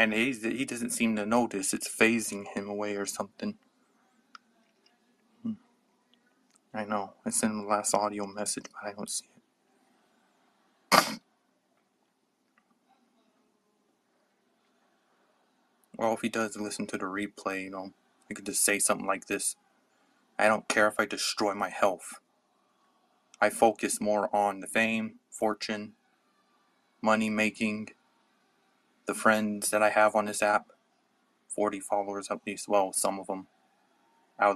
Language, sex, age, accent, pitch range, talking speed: English, male, 20-39, American, 100-120 Hz, 135 wpm